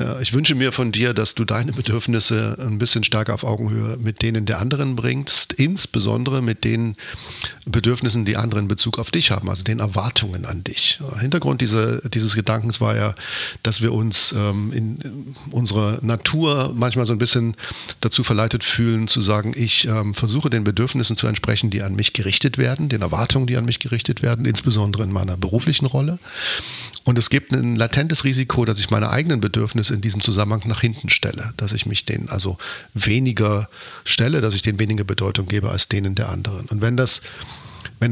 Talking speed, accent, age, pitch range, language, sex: 185 wpm, German, 50-69, 105-125 Hz, German, male